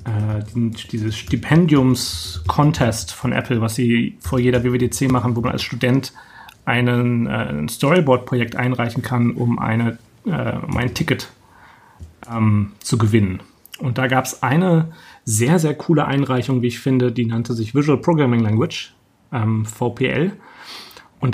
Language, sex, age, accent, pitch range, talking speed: German, male, 30-49, German, 115-140 Hz, 140 wpm